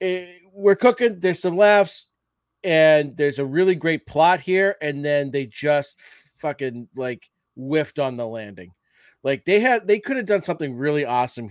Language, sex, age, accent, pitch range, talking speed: English, male, 30-49, American, 120-155 Hz, 165 wpm